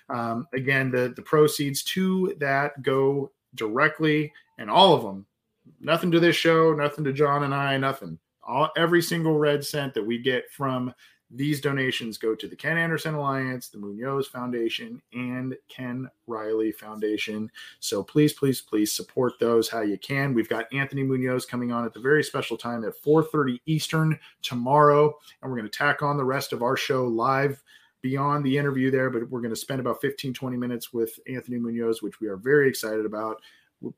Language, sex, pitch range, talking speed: English, male, 110-145 Hz, 185 wpm